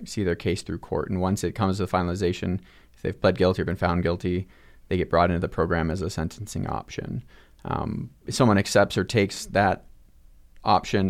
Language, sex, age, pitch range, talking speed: English, male, 30-49, 85-100 Hz, 205 wpm